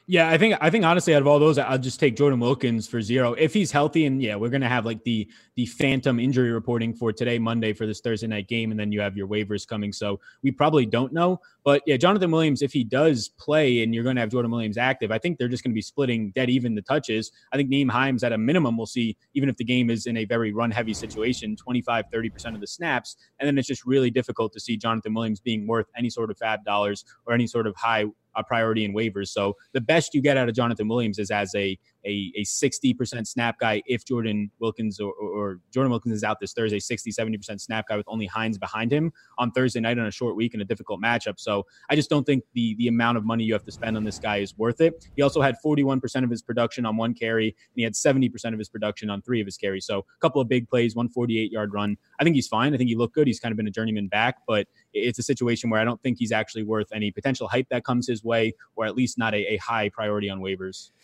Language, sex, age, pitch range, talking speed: English, male, 20-39, 110-130 Hz, 265 wpm